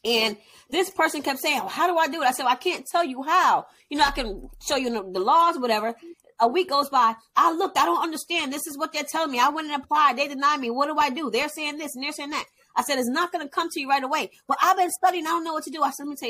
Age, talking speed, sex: 20-39, 325 wpm, female